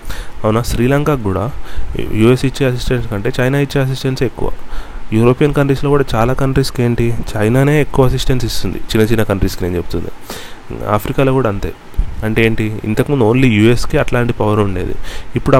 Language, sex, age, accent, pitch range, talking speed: Telugu, male, 30-49, native, 100-125 Hz, 145 wpm